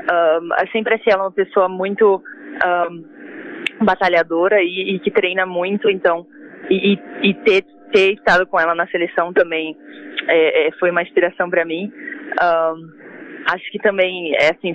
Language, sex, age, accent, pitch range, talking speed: Portuguese, female, 20-39, Brazilian, 175-245 Hz, 150 wpm